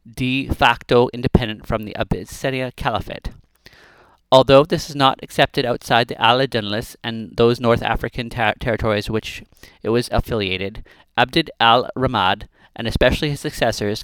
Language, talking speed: English, 135 wpm